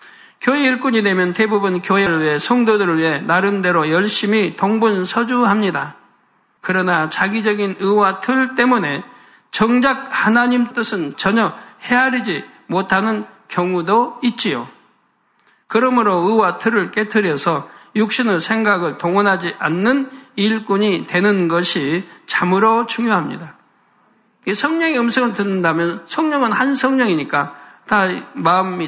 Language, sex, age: Korean, male, 60-79